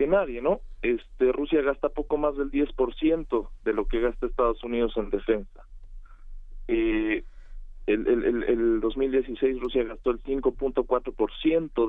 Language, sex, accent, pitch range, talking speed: Spanish, male, Mexican, 110-150 Hz, 140 wpm